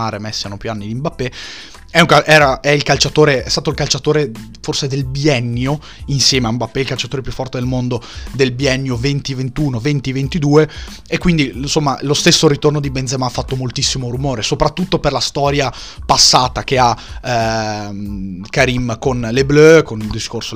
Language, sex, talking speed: Italian, male, 165 wpm